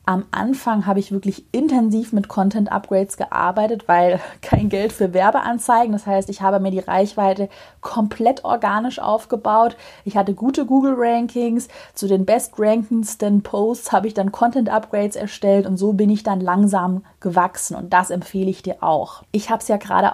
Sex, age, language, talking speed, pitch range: female, 30-49, German, 165 wpm, 190-220 Hz